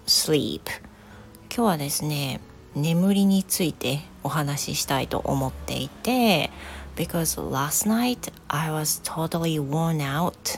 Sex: female